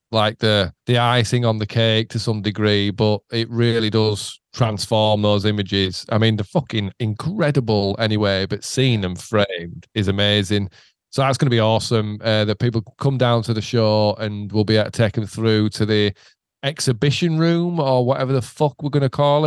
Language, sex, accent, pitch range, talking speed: English, male, British, 105-135 Hz, 195 wpm